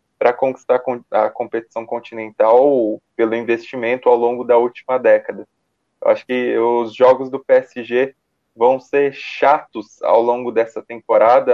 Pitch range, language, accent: 110-130 Hz, Portuguese, Brazilian